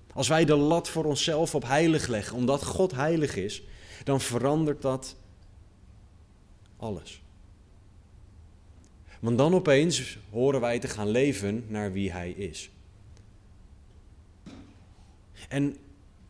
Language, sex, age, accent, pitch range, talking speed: Dutch, male, 30-49, Dutch, 95-145 Hz, 110 wpm